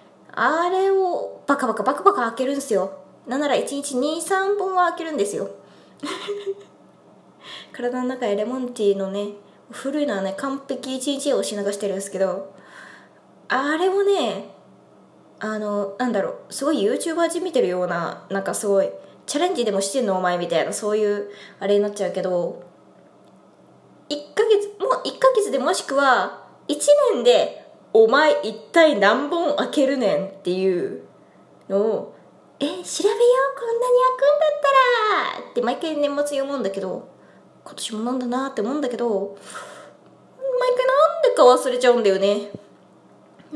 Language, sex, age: Japanese, female, 20-39